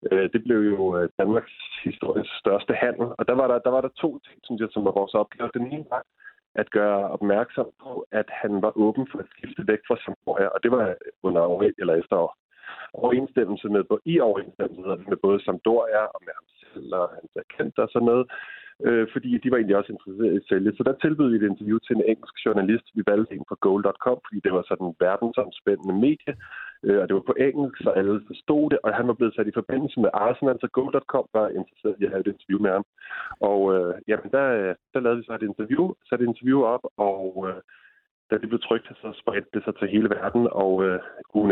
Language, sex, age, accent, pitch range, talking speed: Danish, male, 30-49, native, 100-125 Hz, 220 wpm